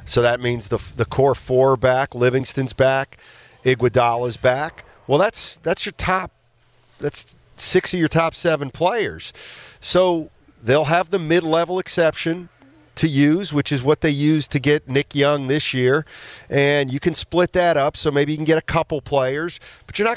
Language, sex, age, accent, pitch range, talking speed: English, male, 40-59, American, 130-165 Hz, 180 wpm